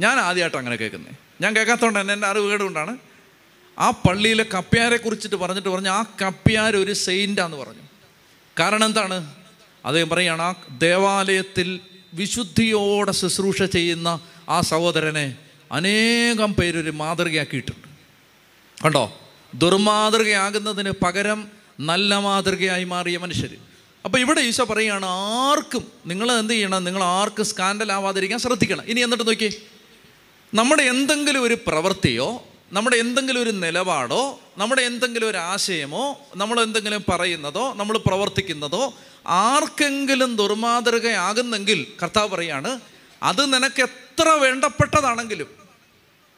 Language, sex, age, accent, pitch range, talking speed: Malayalam, male, 30-49, native, 180-225 Hz, 105 wpm